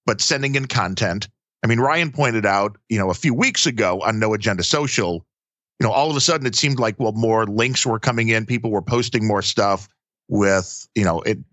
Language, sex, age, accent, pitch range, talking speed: English, male, 40-59, American, 100-130 Hz, 225 wpm